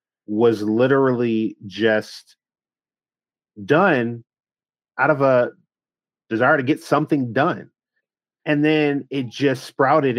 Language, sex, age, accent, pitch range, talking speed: English, male, 30-49, American, 115-150 Hz, 100 wpm